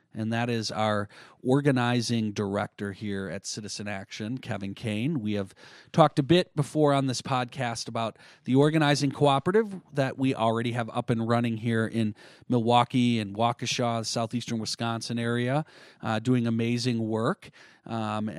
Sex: male